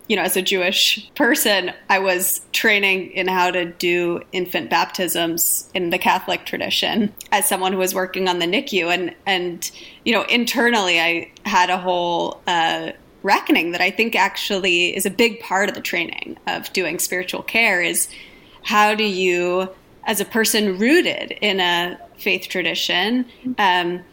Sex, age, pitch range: female, 30-49, 180-230 Hz